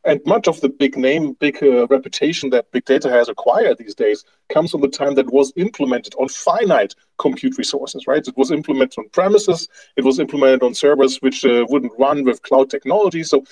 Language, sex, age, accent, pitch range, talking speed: English, male, 30-49, German, 125-180 Hz, 205 wpm